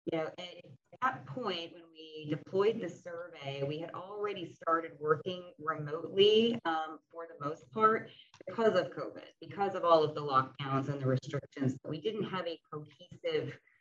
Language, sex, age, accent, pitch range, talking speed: English, female, 30-49, American, 155-200 Hz, 170 wpm